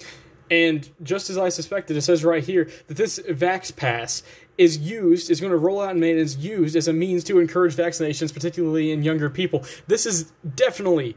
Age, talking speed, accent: 20-39, 205 wpm, American